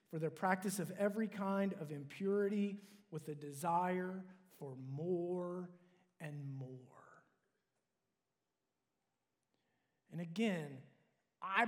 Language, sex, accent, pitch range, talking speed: English, male, American, 170-205 Hz, 90 wpm